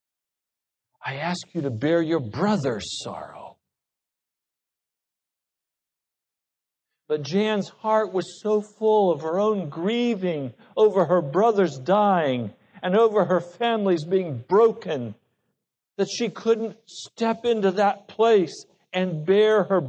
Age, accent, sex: 60-79, American, male